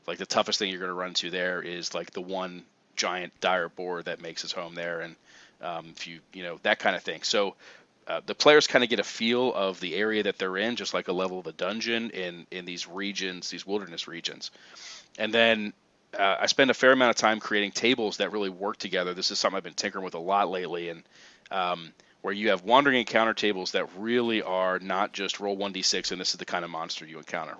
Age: 30-49